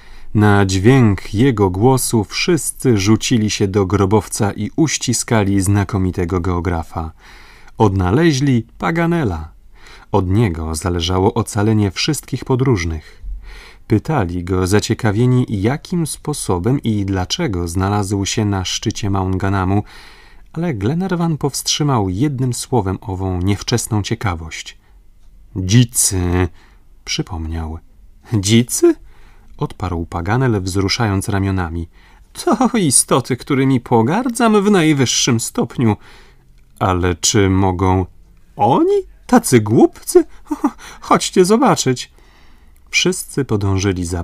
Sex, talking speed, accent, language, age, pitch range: male, 90 wpm, native, Polish, 30-49, 95-130 Hz